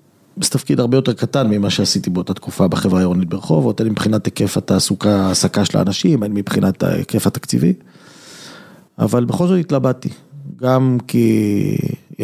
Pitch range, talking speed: 110-135 Hz, 135 wpm